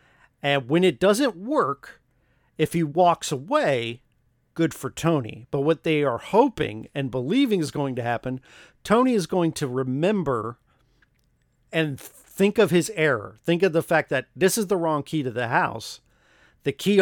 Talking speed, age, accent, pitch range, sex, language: 170 wpm, 50-69, American, 130-165 Hz, male, English